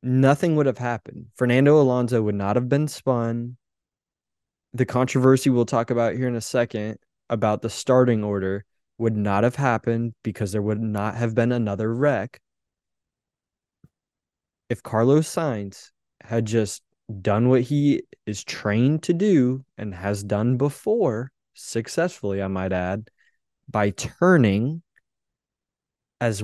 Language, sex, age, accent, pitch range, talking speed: English, male, 20-39, American, 105-130 Hz, 135 wpm